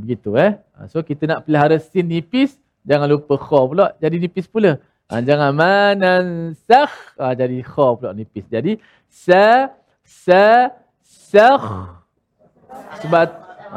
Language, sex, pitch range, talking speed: Malayalam, male, 140-195 Hz, 120 wpm